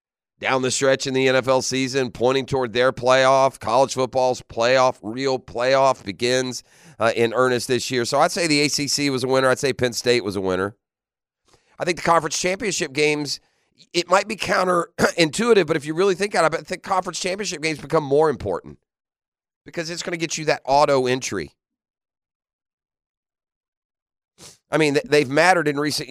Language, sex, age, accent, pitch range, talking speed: English, male, 40-59, American, 130-175 Hz, 175 wpm